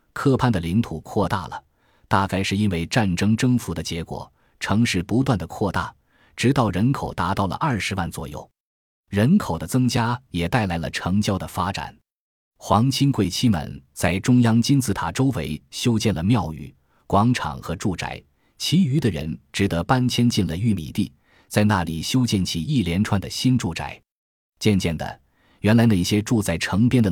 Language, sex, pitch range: Chinese, male, 85-115 Hz